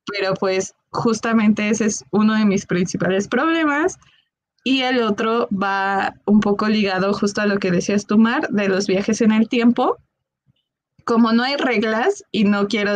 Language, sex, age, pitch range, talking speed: Spanish, female, 20-39, 195-245 Hz, 170 wpm